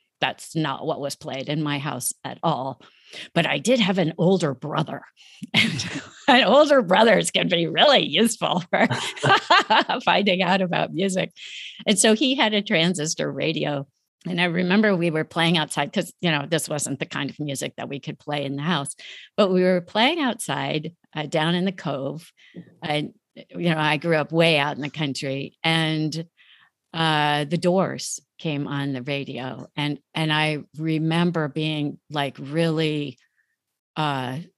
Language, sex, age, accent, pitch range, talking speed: English, female, 50-69, American, 145-175 Hz, 165 wpm